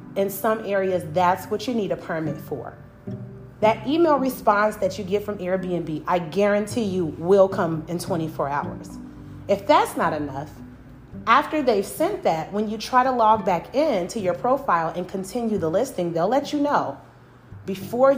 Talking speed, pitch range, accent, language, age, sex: 170 wpm, 170-240 Hz, American, English, 30-49, female